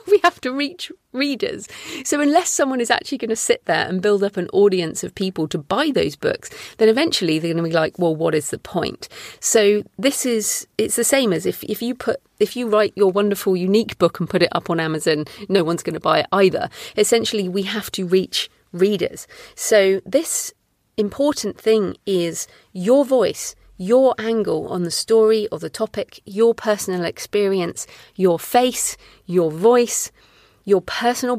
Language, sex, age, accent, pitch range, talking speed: English, female, 40-59, British, 185-245 Hz, 185 wpm